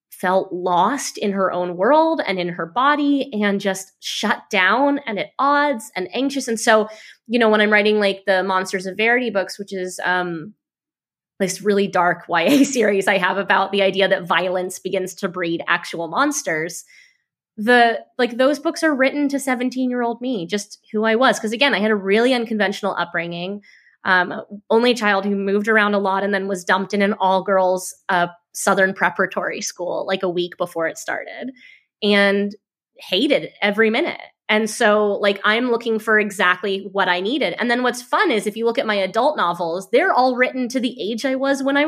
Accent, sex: American, female